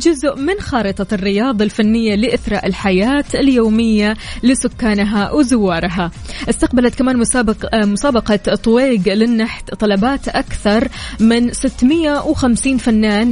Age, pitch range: 20-39, 205-250 Hz